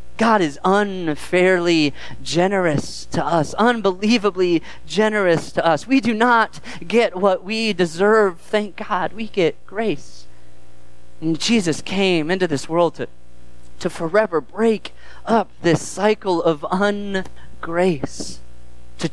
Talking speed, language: 120 wpm, English